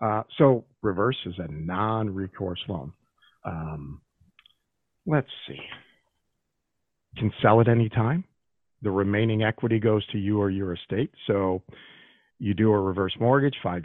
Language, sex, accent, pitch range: English, male, American, 100-130 Hz